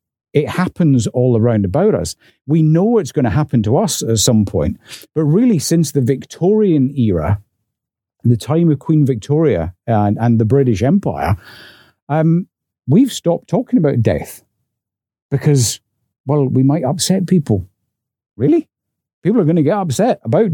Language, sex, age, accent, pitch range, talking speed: English, male, 50-69, British, 110-150 Hz, 155 wpm